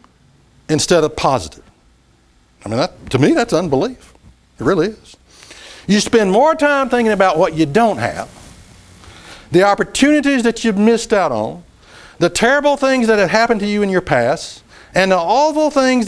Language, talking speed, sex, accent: English, 170 wpm, male, American